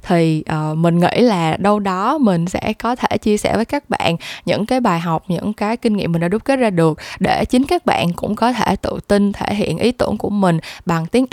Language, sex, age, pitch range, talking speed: Vietnamese, female, 10-29, 175-235 Hz, 250 wpm